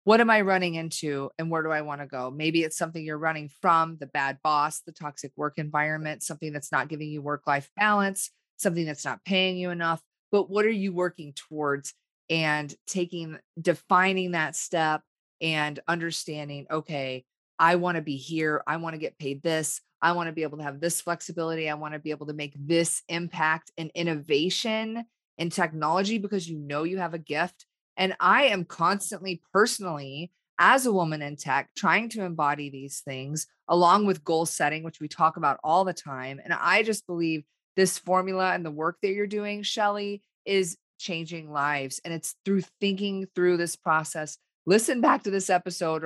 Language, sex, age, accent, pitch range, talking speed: English, female, 30-49, American, 155-190 Hz, 190 wpm